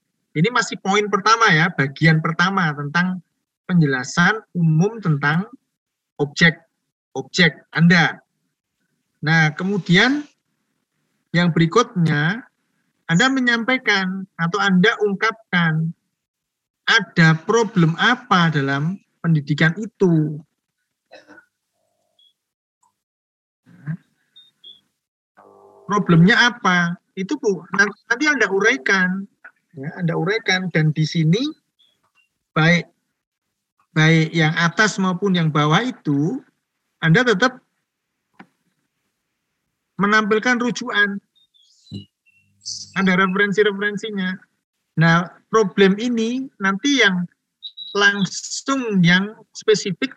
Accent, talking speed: native, 75 wpm